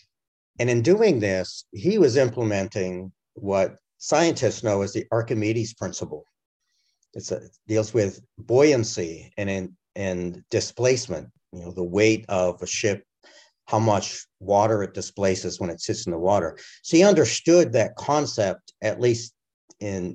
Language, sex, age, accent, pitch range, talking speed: English, male, 50-69, American, 95-115 Hz, 150 wpm